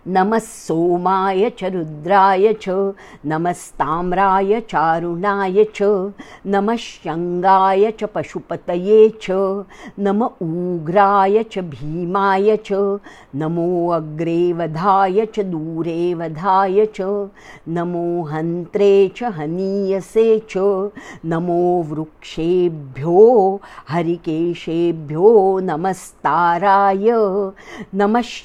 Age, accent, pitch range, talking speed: 50-69, Indian, 170-205 Hz, 50 wpm